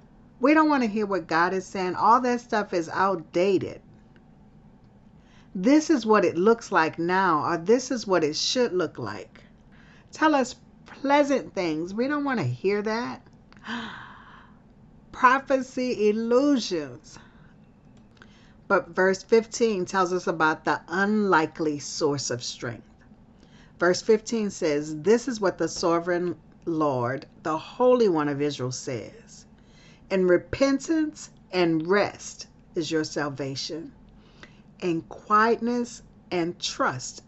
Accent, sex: American, female